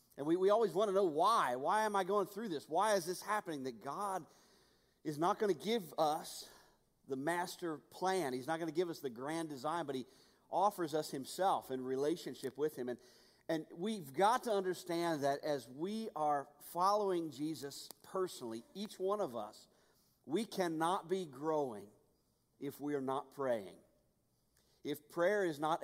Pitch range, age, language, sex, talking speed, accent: 145-185 Hz, 40-59, English, male, 180 wpm, American